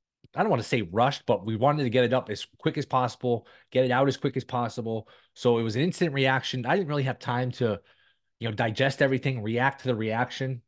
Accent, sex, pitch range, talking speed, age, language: American, male, 115-140 Hz, 245 wpm, 20-39, English